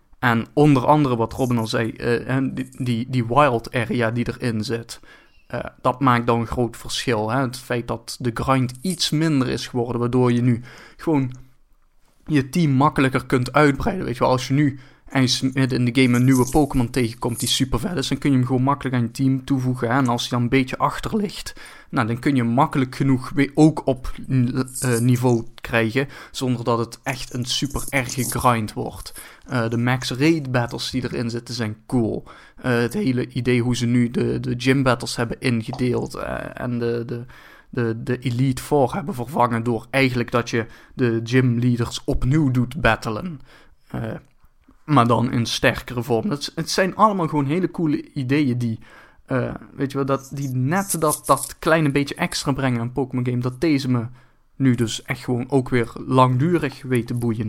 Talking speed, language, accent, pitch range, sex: 190 wpm, Dutch, Dutch, 120-140 Hz, male